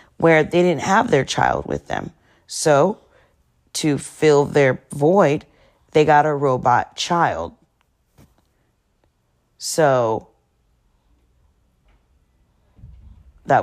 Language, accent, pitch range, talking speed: English, American, 95-155 Hz, 90 wpm